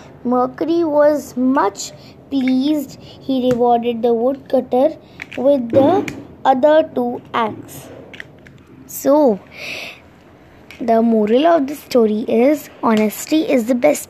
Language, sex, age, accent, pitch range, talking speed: Hindi, female, 20-39, native, 245-295 Hz, 100 wpm